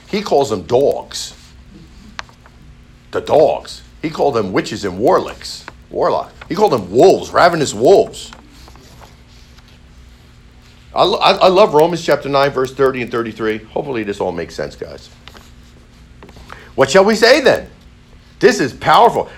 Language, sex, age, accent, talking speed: English, male, 50-69, American, 135 wpm